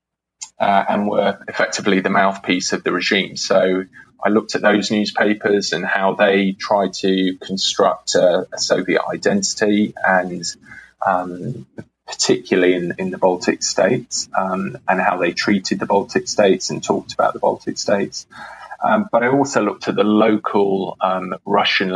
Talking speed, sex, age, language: 155 wpm, male, 20-39, English